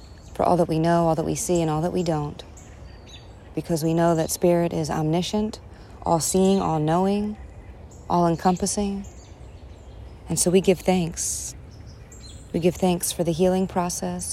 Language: English